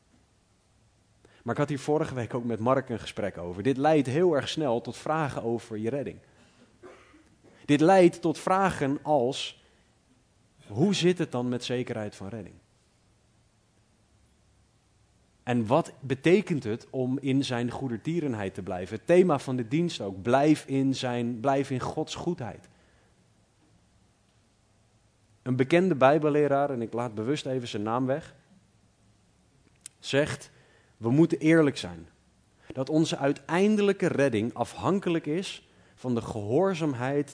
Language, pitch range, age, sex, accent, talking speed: Dutch, 110-150 Hz, 30-49, male, Dutch, 130 wpm